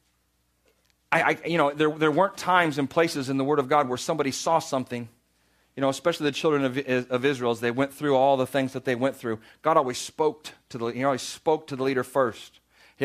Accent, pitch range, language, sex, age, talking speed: American, 130-165 Hz, English, male, 40-59, 230 wpm